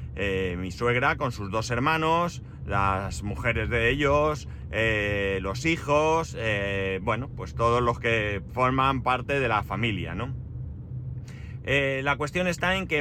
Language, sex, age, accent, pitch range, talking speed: Spanish, male, 30-49, Spanish, 105-140 Hz, 150 wpm